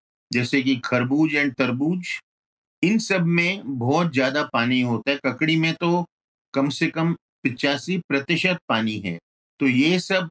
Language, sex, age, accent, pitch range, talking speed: Hindi, male, 50-69, native, 130-165 Hz, 150 wpm